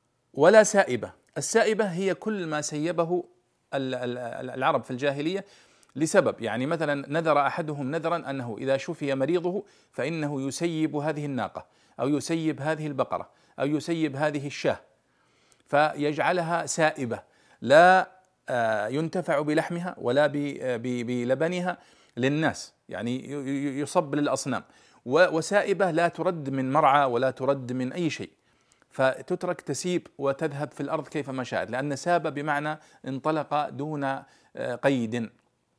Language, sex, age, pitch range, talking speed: Arabic, male, 40-59, 130-175 Hz, 110 wpm